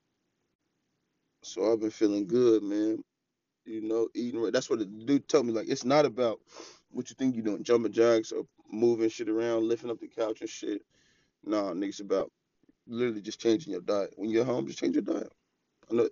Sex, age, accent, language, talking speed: male, 20-39, American, English, 200 wpm